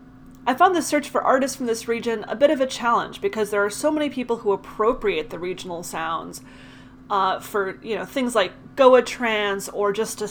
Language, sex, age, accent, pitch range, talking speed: English, female, 30-49, American, 195-255 Hz, 210 wpm